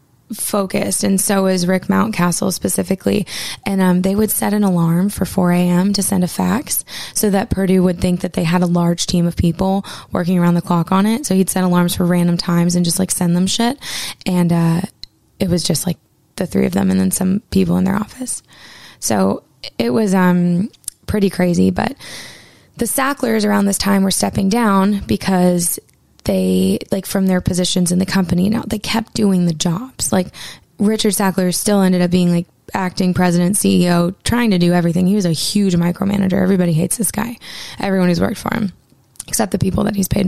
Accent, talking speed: American, 200 wpm